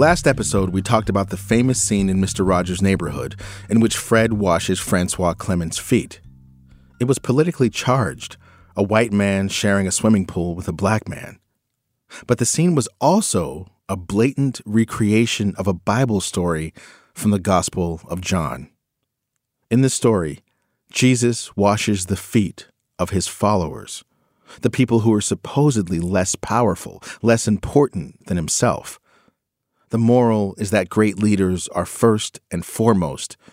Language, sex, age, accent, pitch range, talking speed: English, male, 40-59, American, 90-120 Hz, 145 wpm